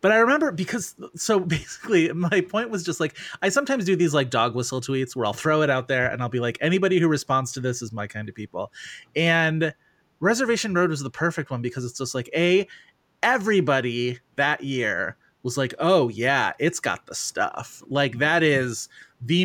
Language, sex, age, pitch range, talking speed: English, male, 30-49, 120-155 Hz, 205 wpm